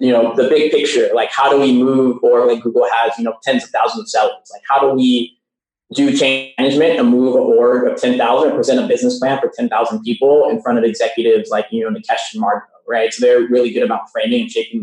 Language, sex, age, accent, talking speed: English, male, 20-39, American, 245 wpm